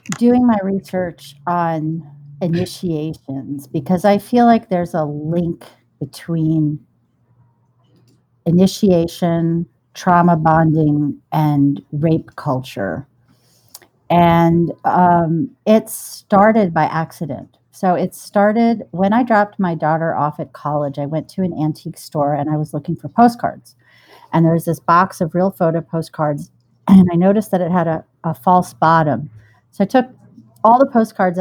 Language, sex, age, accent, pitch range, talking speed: English, female, 50-69, American, 145-185 Hz, 140 wpm